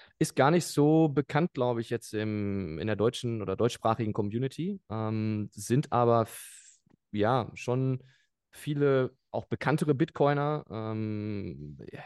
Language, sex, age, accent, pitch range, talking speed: German, male, 20-39, German, 105-125 Hz, 130 wpm